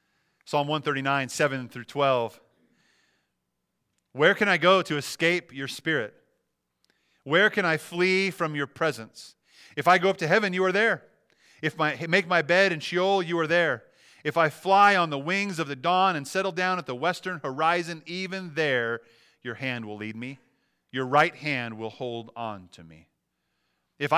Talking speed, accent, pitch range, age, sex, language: 175 wpm, American, 105-155 Hz, 40-59, male, English